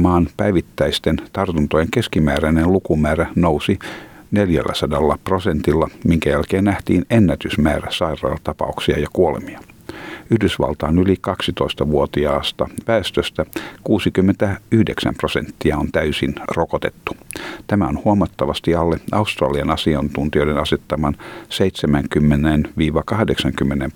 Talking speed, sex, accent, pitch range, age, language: 80 wpm, male, native, 75-95 Hz, 50-69, Finnish